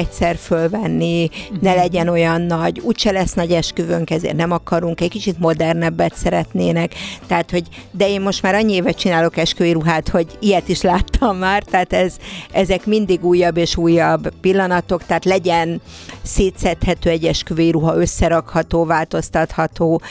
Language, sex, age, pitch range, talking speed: Hungarian, female, 50-69, 160-180 Hz, 145 wpm